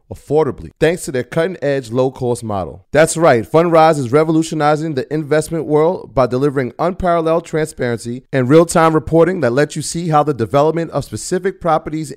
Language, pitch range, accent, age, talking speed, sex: English, 120-155 Hz, American, 30-49, 160 wpm, male